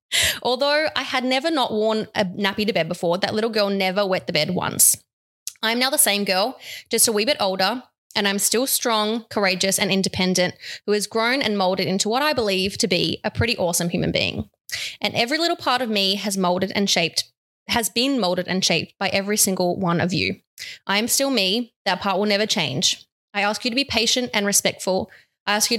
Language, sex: English, female